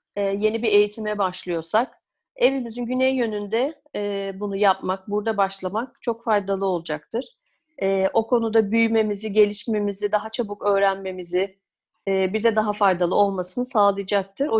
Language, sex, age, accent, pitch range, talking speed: Turkish, female, 40-59, native, 200-235 Hz, 110 wpm